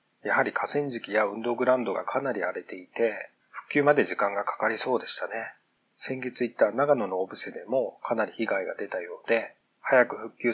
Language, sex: Japanese, male